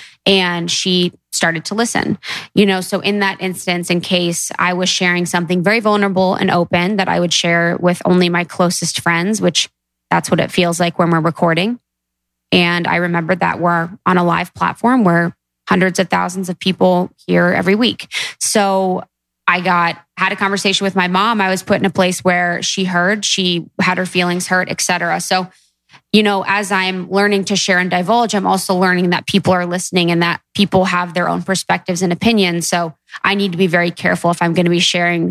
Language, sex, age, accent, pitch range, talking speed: English, female, 20-39, American, 175-195 Hz, 205 wpm